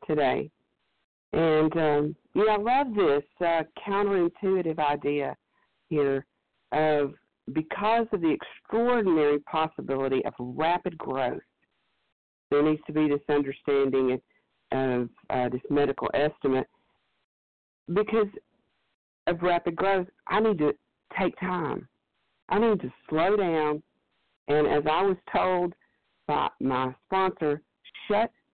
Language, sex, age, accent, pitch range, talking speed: English, female, 50-69, American, 145-210 Hz, 110 wpm